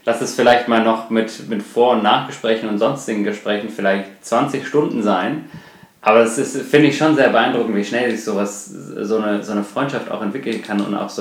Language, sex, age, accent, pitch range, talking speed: German, male, 30-49, German, 105-165 Hz, 205 wpm